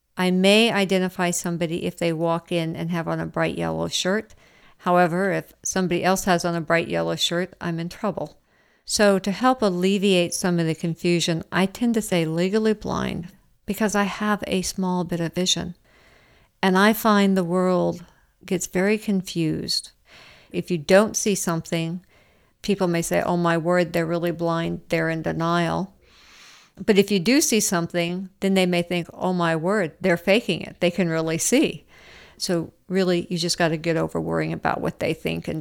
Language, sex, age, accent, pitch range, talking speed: English, female, 50-69, American, 170-195 Hz, 185 wpm